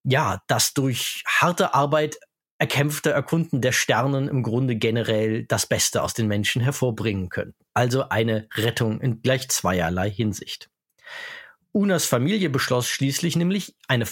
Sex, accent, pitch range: male, German, 115-150 Hz